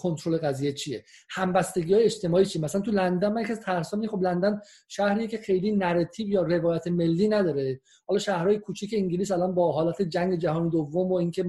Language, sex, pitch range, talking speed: Persian, male, 180-220 Hz, 180 wpm